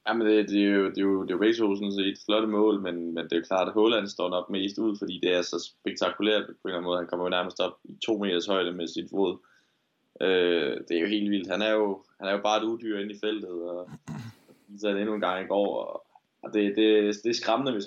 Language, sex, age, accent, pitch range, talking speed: Danish, male, 20-39, native, 90-105 Hz, 260 wpm